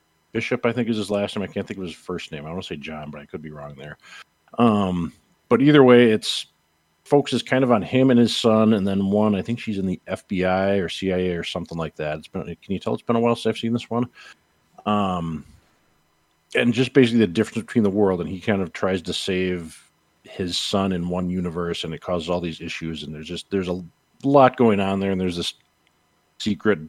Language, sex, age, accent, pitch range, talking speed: English, male, 40-59, American, 85-110 Hz, 240 wpm